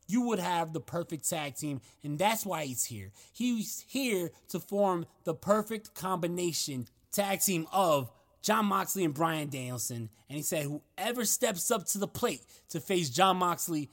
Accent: American